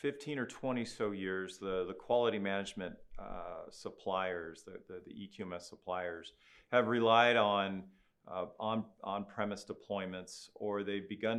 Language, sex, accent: English, male, American